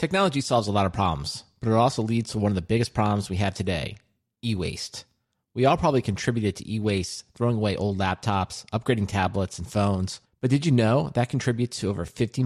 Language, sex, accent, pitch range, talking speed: English, male, American, 100-130 Hz, 205 wpm